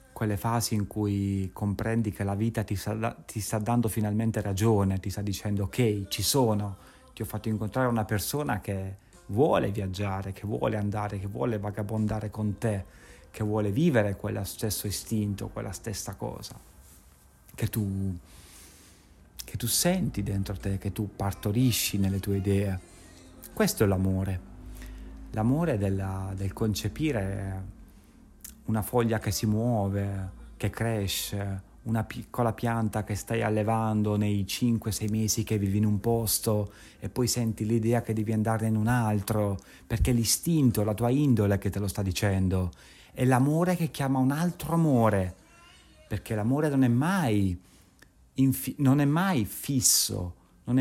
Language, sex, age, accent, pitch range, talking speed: Italian, male, 30-49, native, 100-115 Hz, 140 wpm